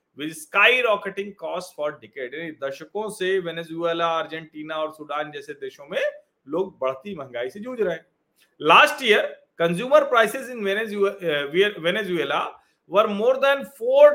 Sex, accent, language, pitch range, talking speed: male, native, Hindi, 180-260 Hz, 125 wpm